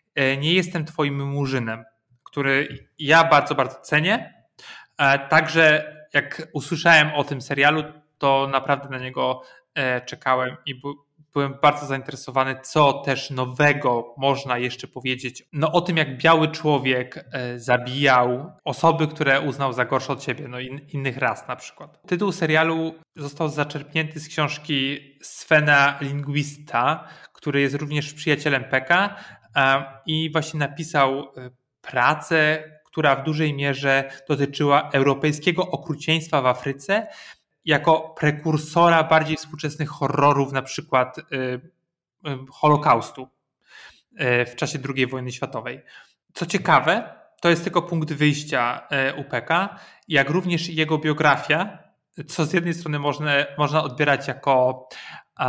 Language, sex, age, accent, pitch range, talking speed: Polish, male, 20-39, native, 135-155 Hz, 115 wpm